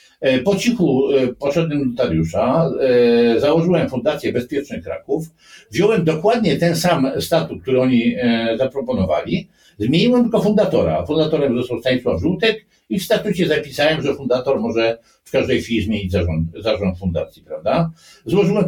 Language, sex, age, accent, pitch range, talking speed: Polish, male, 60-79, native, 115-170 Hz, 125 wpm